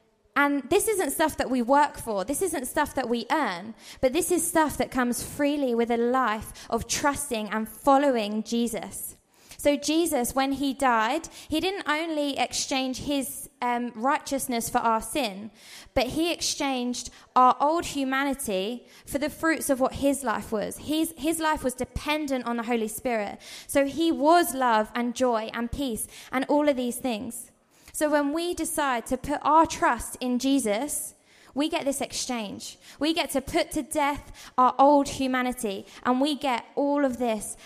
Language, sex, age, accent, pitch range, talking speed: English, female, 20-39, British, 235-295 Hz, 175 wpm